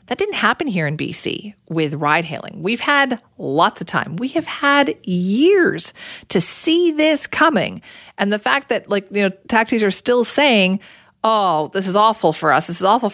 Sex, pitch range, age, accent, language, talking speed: female, 165-220 Hz, 40-59, American, English, 190 wpm